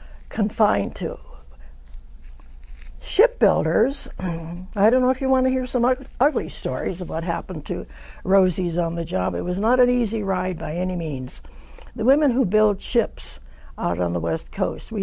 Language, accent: English, American